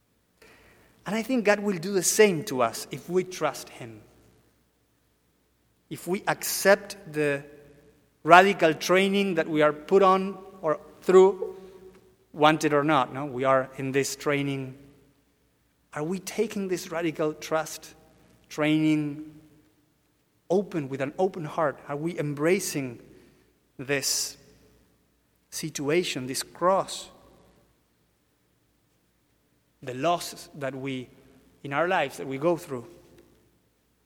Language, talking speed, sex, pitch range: English, 115 wpm, male, 135-180 Hz